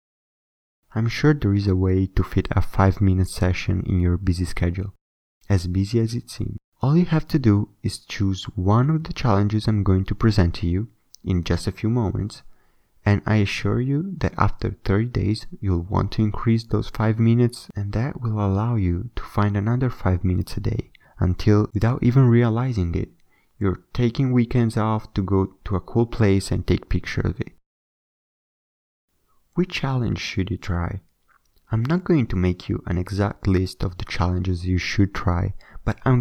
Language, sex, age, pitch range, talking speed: English, male, 30-49, 95-115 Hz, 185 wpm